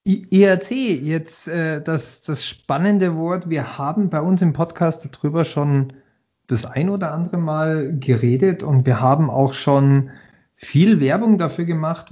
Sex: male